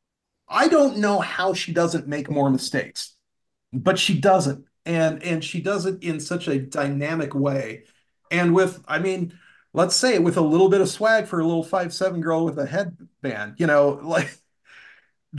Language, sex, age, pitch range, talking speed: English, male, 40-59, 135-170 Hz, 175 wpm